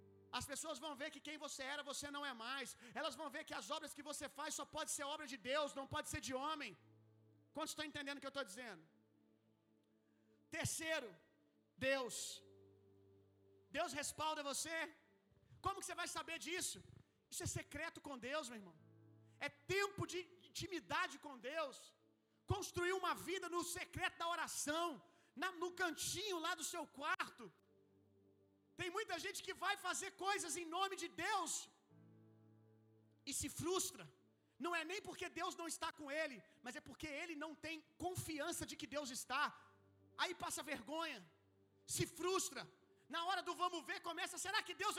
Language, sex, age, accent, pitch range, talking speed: Gujarati, male, 40-59, Brazilian, 255-360 Hz, 170 wpm